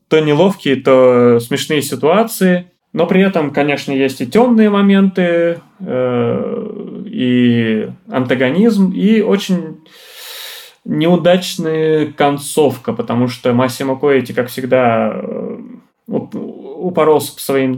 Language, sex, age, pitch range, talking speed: Russian, male, 20-39, 130-190 Hz, 100 wpm